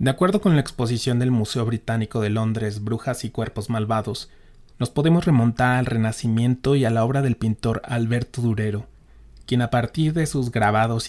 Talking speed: 180 wpm